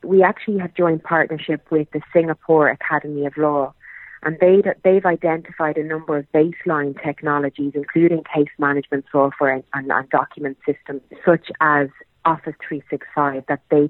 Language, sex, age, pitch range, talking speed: English, female, 30-49, 140-160 Hz, 145 wpm